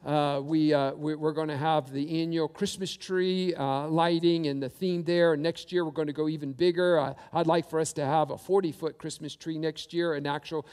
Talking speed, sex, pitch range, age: 230 wpm, male, 145-175 Hz, 50-69